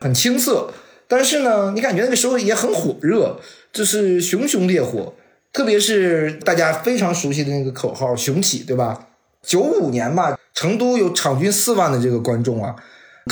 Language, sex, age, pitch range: Chinese, male, 20-39, 135-210 Hz